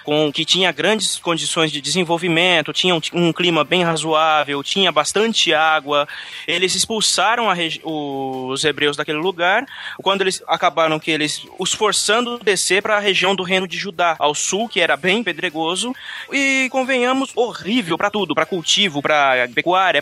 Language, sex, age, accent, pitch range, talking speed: Portuguese, male, 20-39, Brazilian, 155-195 Hz, 160 wpm